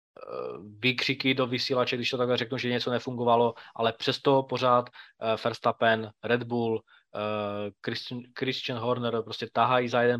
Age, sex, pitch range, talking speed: 20-39, male, 115-130 Hz, 135 wpm